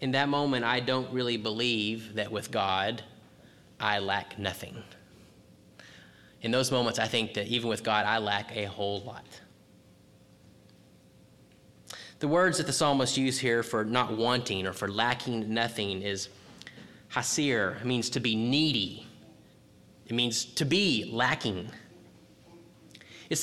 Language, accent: English, American